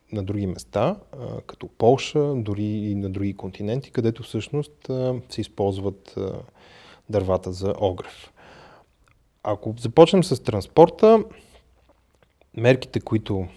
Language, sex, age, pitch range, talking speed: Bulgarian, male, 20-39, 100-130 Hz, 100 wpm